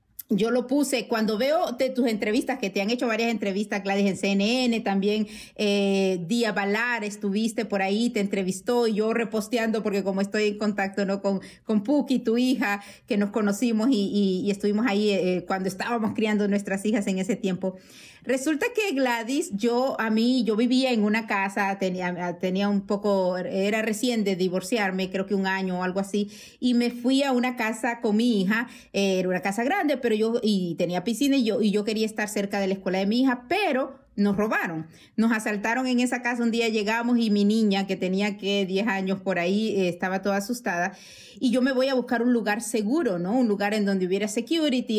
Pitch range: 200-245 Hz